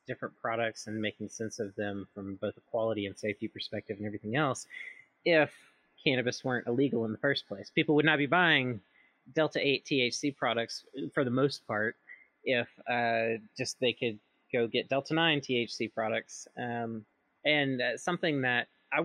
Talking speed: 175 wpm